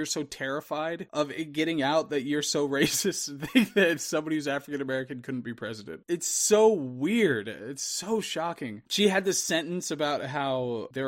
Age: 20-39